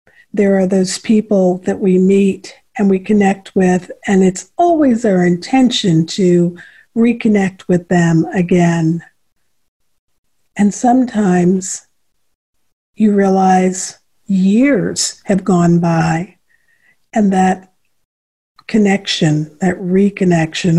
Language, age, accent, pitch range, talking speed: English, 50-69, American, 180-215 Hz, 100 wpm